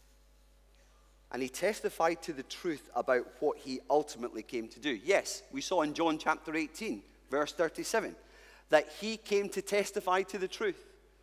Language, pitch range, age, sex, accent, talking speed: English, 145-210 Hz, 30-49, male, British, 160 wpm